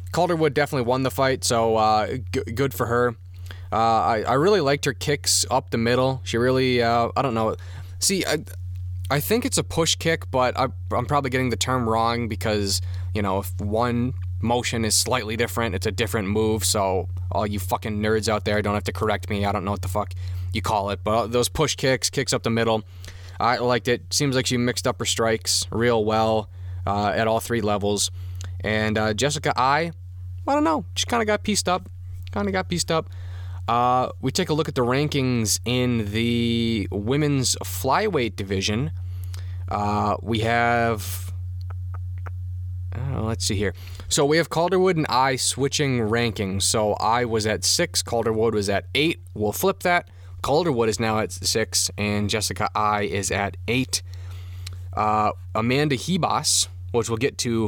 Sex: male